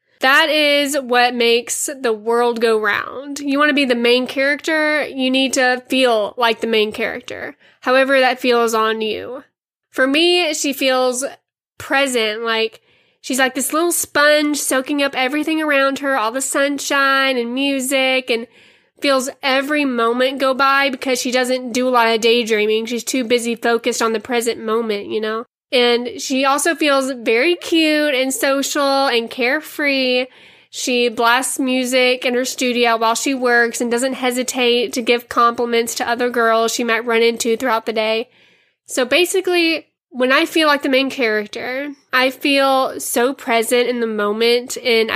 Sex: female